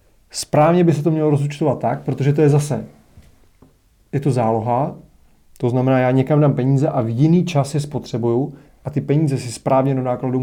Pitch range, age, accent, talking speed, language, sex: 125-145 Hz, 30-49, native, 190 wpm, Czech, male